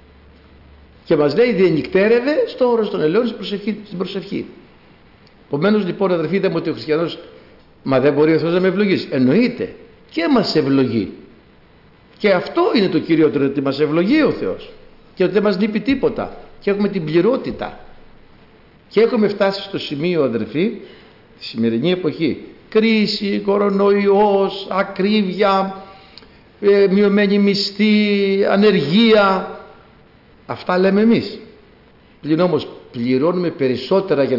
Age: 60-79